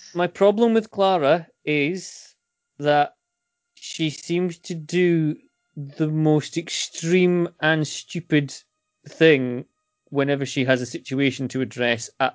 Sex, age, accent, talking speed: male, 30-49, British, 115 wpm